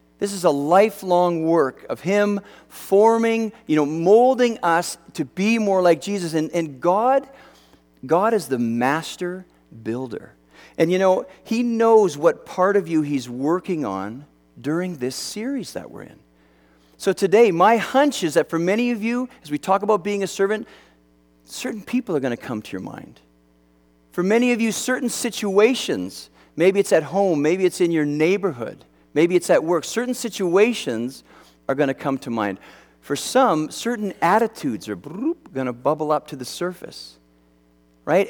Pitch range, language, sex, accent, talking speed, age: 125-205 Hz, English, male, American, 170 wpm, 50-69